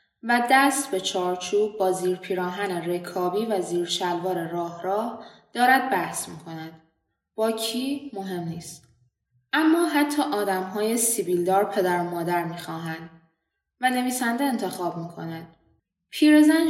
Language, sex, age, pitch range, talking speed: Persian, female, 10-29, 175-235 Hz, 120 wpm